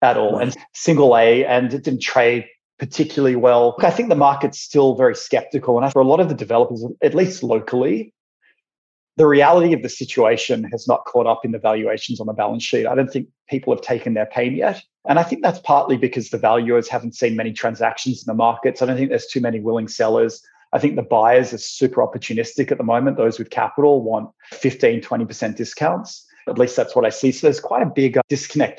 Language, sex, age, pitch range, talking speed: English, male, 30-49, 115-150 Hz, 220 wpm